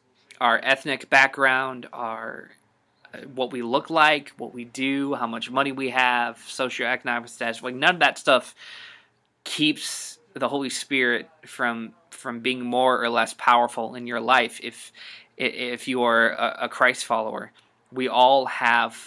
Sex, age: male, 20-39